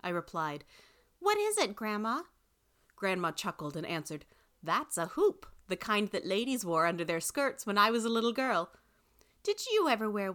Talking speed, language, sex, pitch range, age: 180 wpm, English, female, 170-255 Hz, 30-49